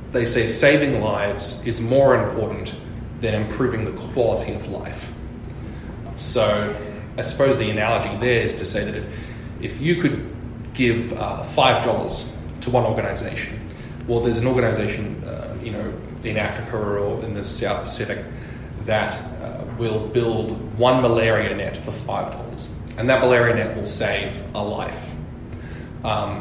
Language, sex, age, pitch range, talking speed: English, male, 20-39, 105-120 Hz, 150 wpm